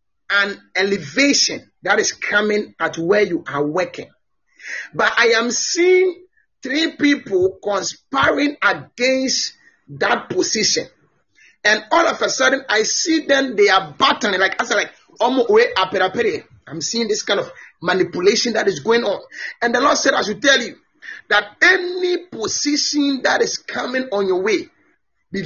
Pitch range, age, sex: 210-310 Hz, 30-49, male